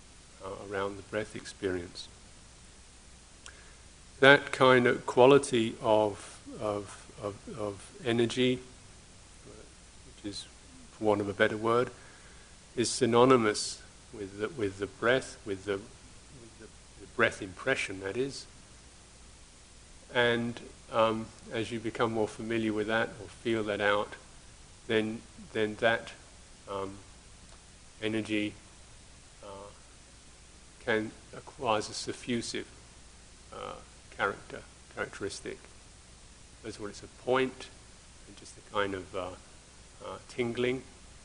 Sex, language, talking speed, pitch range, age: male, English, 110 wpm, 100-120 Hz, 50-69